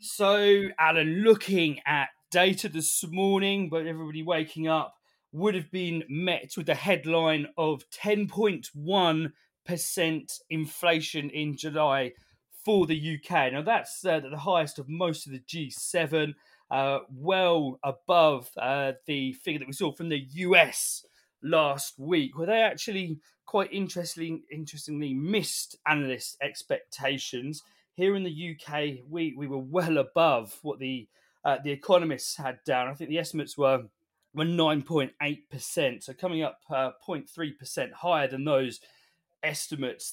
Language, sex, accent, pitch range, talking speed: English, male, British, 145-175 Hz, 140 wpm